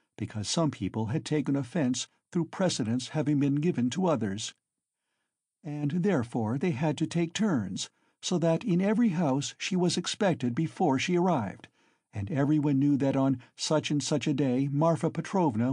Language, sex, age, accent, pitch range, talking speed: English, male, 60-79, American, 130-170 Hz, 165 wpm